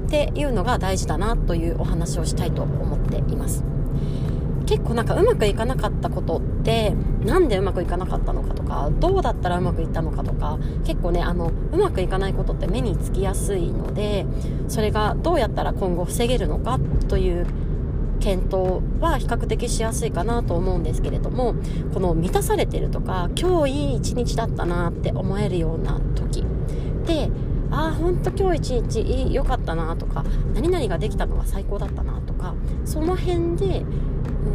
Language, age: Japanese, 30-49